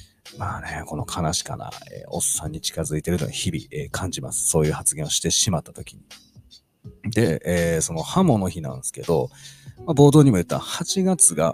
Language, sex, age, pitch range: Japanese, male, 40-59, 90-130 Hz